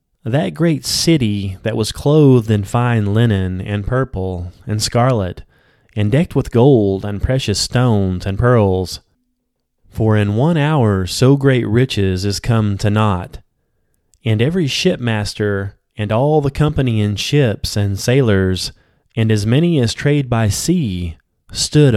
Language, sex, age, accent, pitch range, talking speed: English, male, 30-49, American, 100-125 Hz, 140 wpm